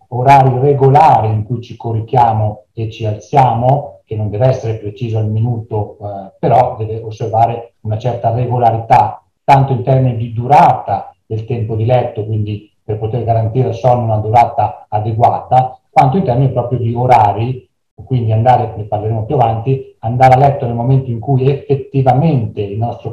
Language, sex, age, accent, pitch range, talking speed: Italian, male, 40-59, native, 110-130 Hz, 165 wpm